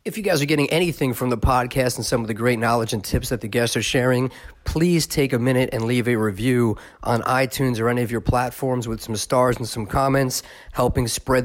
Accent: American